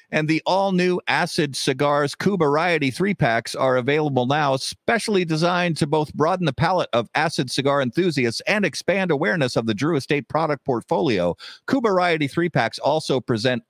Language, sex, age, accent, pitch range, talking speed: English, male, 50-69, American, 130-175 Hz, 160 wpm